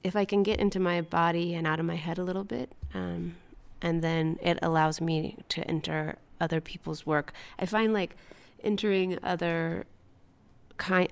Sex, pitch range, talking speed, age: female, 155-185 Hz, 175 wpm, 30-49